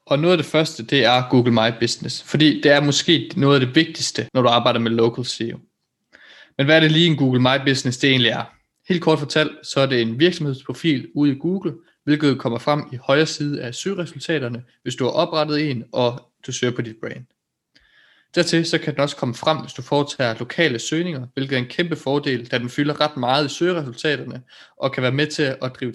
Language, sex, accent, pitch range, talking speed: Danish, male, native, 120-150 Hz, 225 wpm